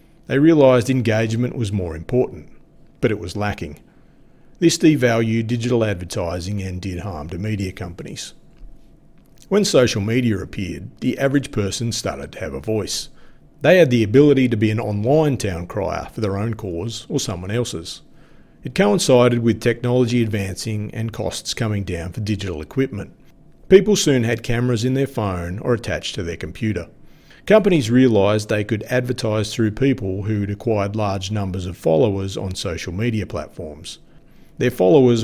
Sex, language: male, English